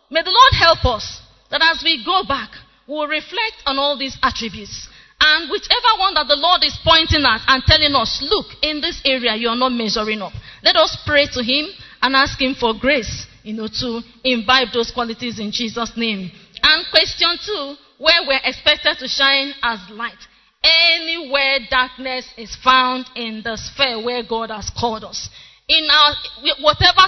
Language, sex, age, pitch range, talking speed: English, female, 20-39, 230-290 Hz, 180 wpm